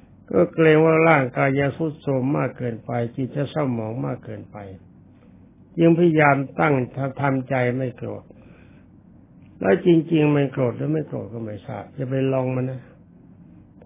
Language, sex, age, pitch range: Thai, male, 60-79, 120-155 Hz